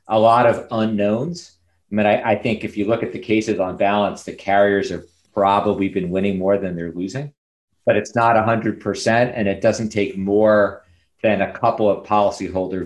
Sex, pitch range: male, 95-115 Hz